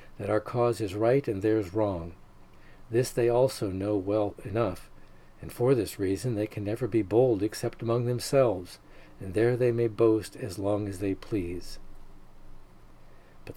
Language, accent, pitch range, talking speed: English, American, 100-120 Hz, 165 wpm